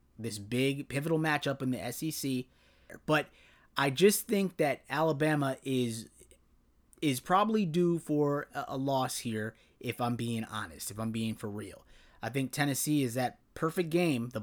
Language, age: English, 30-49